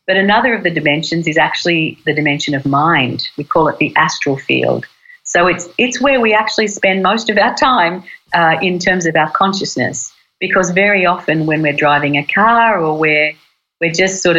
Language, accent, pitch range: English, Australian, 150-190 Hz